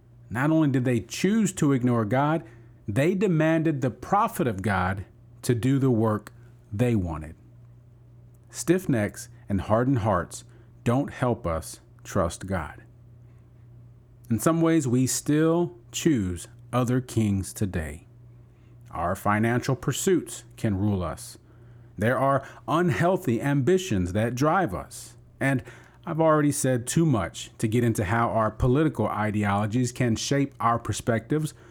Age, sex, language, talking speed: 40-59, male, English, 130 wpm